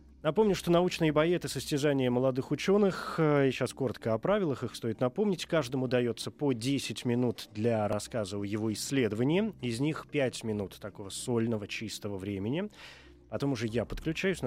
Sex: male